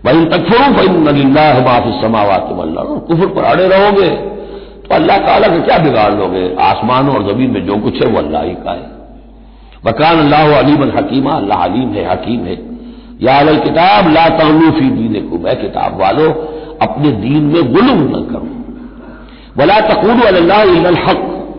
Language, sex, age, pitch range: Hindi, male, 60-79, 125-170 Hz